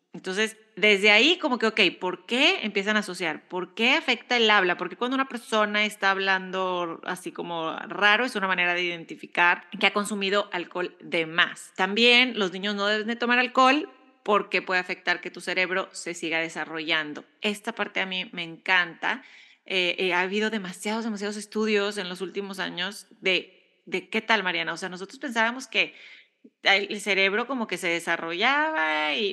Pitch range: 185-235 Hz